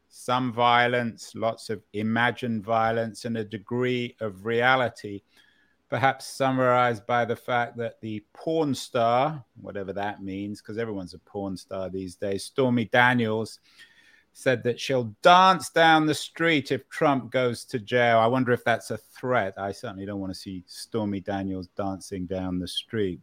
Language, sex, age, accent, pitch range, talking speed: English, male, 30-49, British, 105-135 Hz, 160 wpm